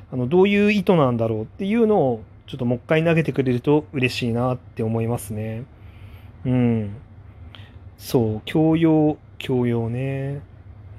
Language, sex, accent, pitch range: Japanese, male, native, 110-150 Hz